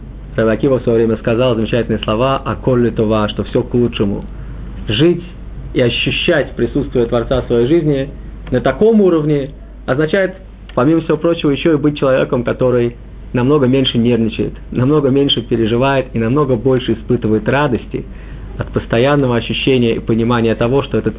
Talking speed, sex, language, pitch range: 145 wpm, male, Russian, 115-145 Hz